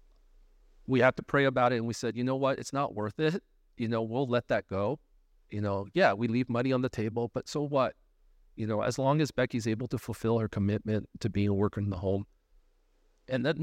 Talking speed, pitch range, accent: 235 wpm, 105-145 Hz, American